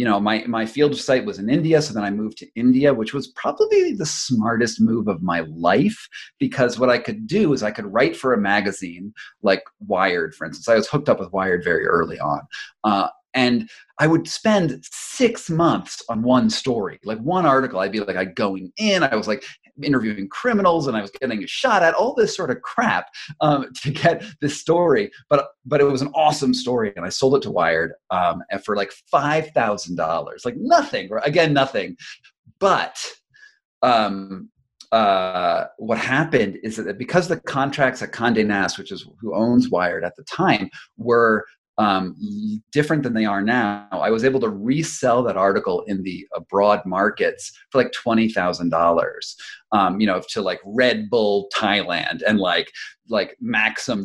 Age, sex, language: 30-49, male, English